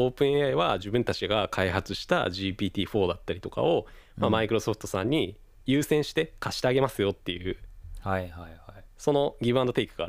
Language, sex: Japanese, male